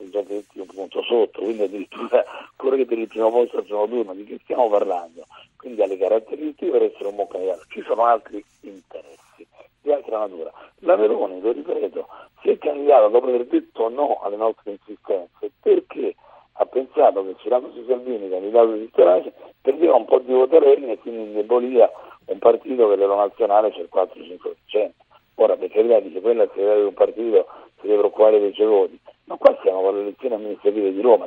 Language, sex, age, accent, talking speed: Italian, male, 50-69, native, 180 wpm